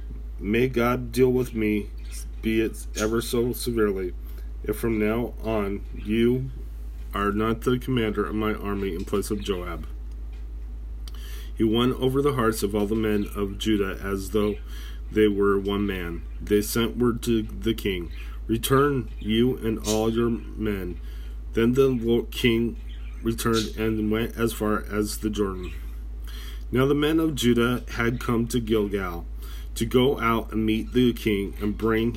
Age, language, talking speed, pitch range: 30-49, English, 155 wpm, 75-115 Hz